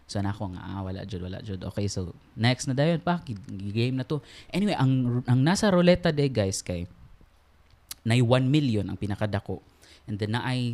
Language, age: Filipino, 20-39